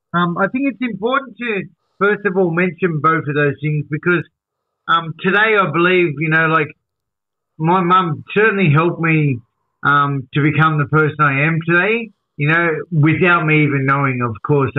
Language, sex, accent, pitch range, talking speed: English, male, Australian, 140-180 Hz, 175 wpm